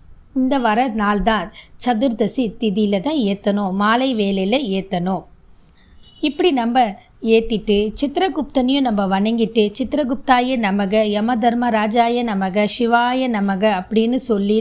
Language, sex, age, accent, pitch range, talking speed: Tamil, female, 20-39, native, 210-245 Hz, 100 wpm